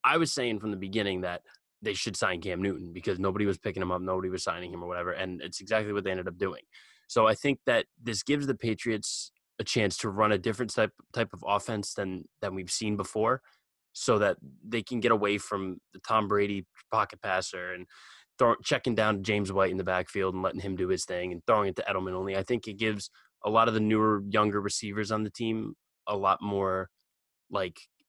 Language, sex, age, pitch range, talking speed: English, male, 20-39, 95-115 Hz, 225 wpm